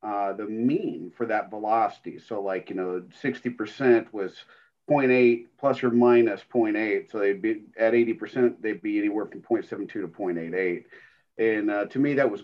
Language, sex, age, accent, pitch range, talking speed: Italian, male, 40-59, American, 105-130 Hz, 170 wpm